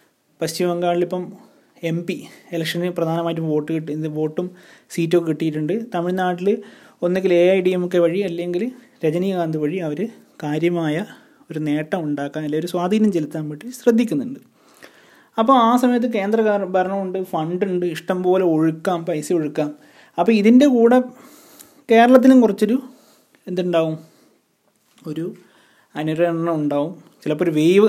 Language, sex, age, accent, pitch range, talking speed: Malayalam, male, 20-39, native, 160-210 Hz, 120 wpm